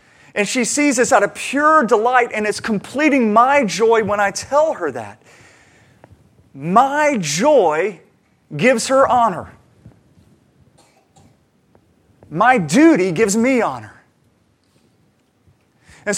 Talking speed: 110 wpm